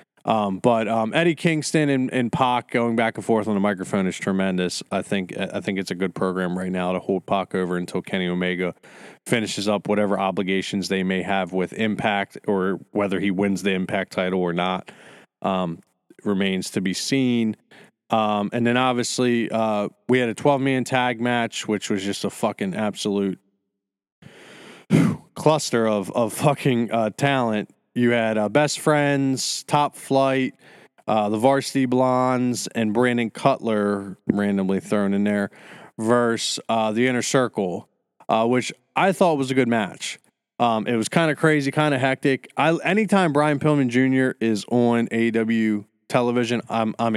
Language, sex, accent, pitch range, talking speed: English, male, American, 100-130 Hz, 165 wpm